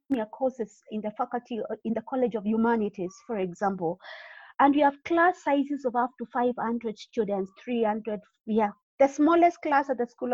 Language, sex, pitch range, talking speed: English, female, 225-295 Hz, 170 wpm